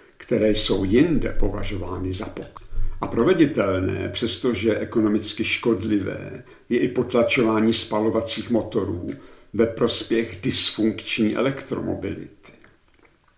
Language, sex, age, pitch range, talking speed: Czech, male, 60-79, 110-135 Hz, 90 wpm